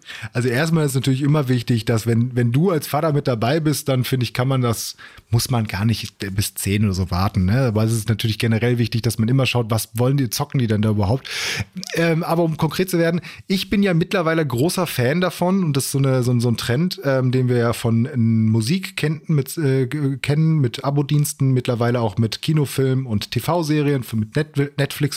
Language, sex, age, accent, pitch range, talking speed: German, male, 30-49, German, 120-150 Hz, 220 wpm